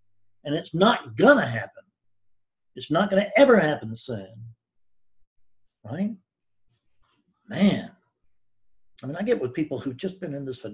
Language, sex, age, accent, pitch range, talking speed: English, male, 50-69, American, 105-150 Hz, 140 wpm